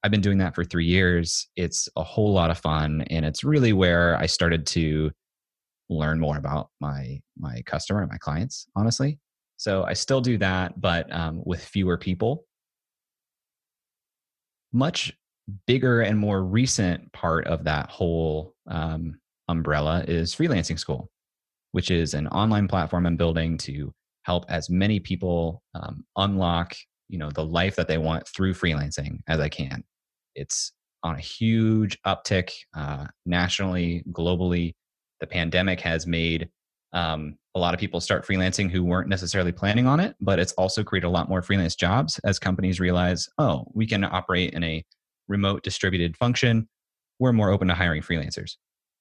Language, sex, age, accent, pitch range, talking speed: English, male, 30-49, American, 80-95 Hz, 160 wpm